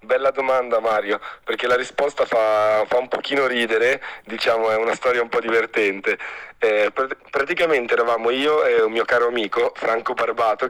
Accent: native